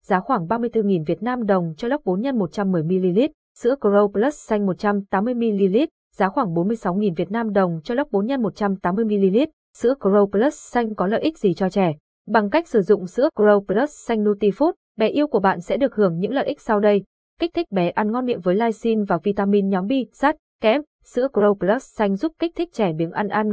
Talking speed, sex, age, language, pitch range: 200 wpm, female, 20-39, Vietnamese, 195-245 Hz